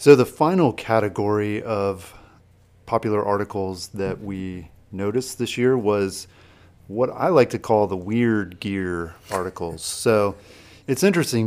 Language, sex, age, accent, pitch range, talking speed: English, male, 30-49, American, 95-115 Hz, 130 wpm